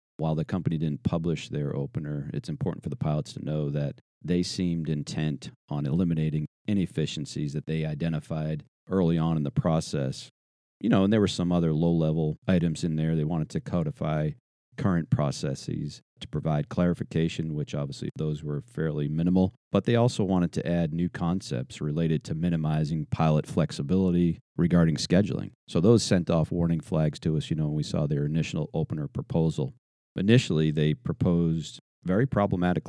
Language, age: English, 40-59